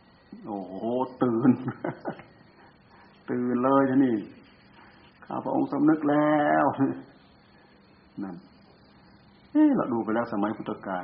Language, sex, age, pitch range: Thai, male, 60-79, 105-130 Hz